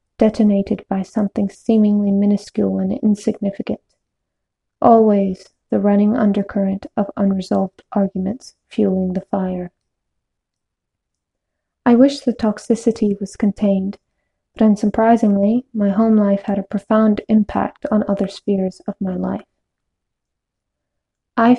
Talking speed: 110 wpm